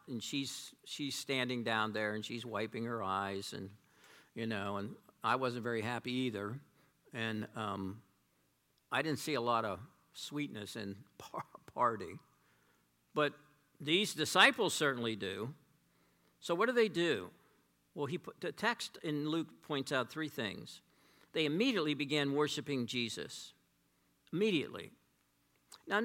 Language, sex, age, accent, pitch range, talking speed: English, male, 50-69, American, 125-205 Hz, 140 wpm